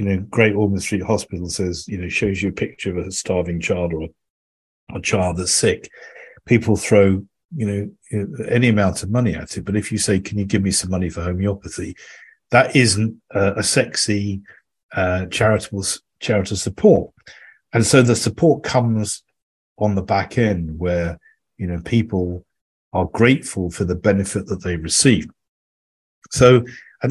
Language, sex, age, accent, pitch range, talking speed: English, male, 50-69, British, 90-115 Hz, 170 wpm